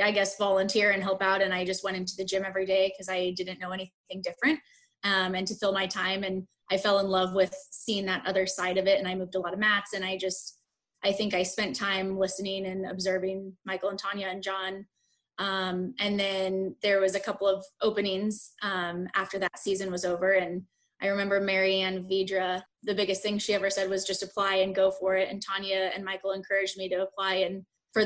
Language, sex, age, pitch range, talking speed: English, female, 20-39, 190-200 Hz, 225 wpm